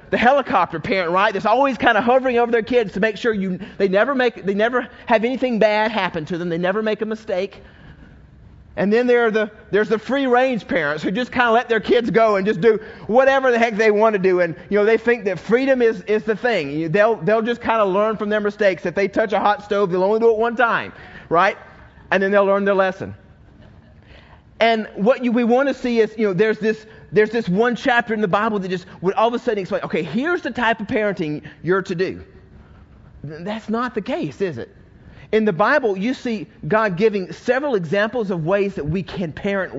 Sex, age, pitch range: male, 30-49, 195-240 Hz